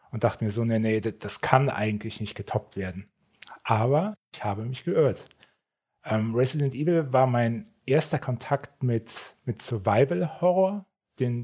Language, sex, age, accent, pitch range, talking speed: German, male, 40-59, German, 110-135 Hz, 150 wpm